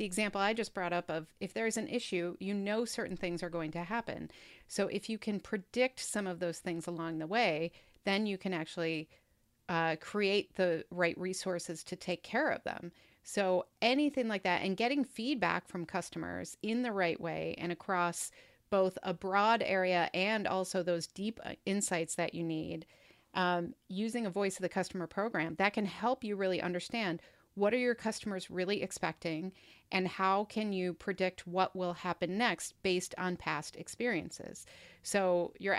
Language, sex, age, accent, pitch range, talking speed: English, female, 40-59, American, 175-210 Hz, 180 wpm